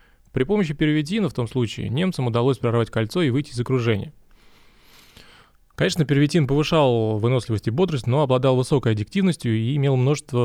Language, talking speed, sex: Russian, 155 wpm, male